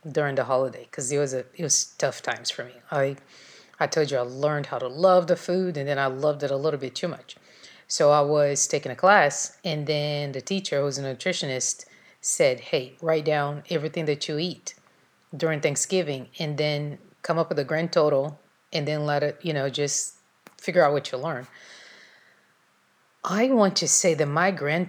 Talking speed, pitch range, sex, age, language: 205 wpm, 140-170 Hz, female, 30-49, English